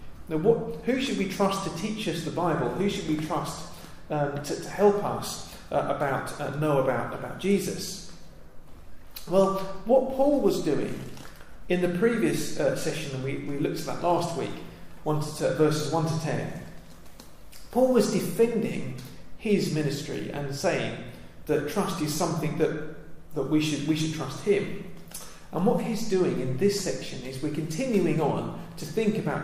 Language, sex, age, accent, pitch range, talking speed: English, male, 40-59, British, 145-195 Hz, 175 wpm